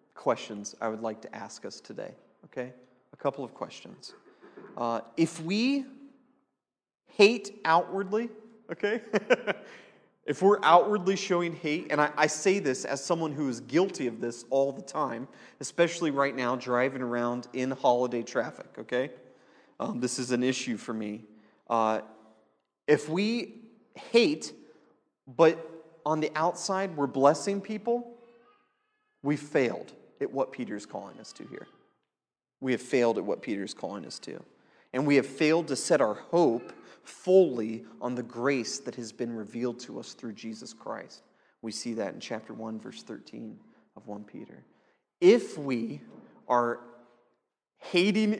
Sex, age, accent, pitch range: male, 30-49, American, 120-190 Hz